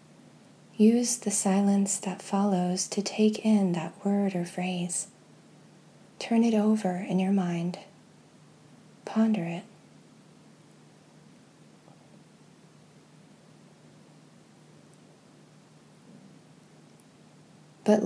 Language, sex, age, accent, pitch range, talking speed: English, female, 30-49, American, 185-215 Hz, 70 wpm